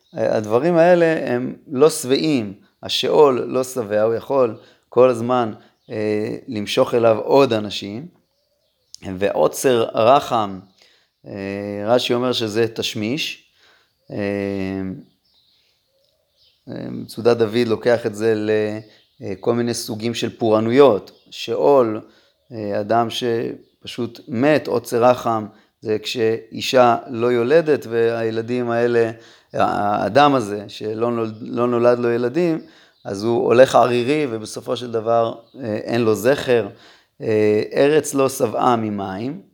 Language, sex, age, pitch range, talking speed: Hebrew, male, 30-49, 110-125 Hz, 100 wpm